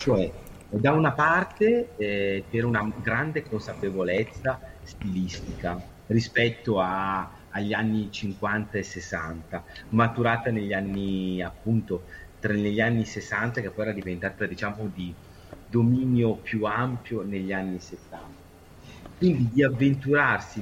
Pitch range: 95-125 Hz